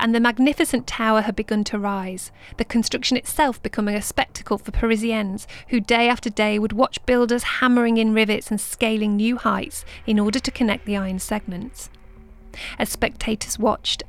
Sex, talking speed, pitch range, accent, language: female, 170 wpm, 205-240 Hz, British, English